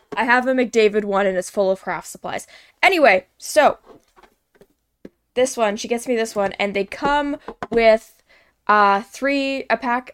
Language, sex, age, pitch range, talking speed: English, female, 10-29, 225-315 Hz, 165 wpm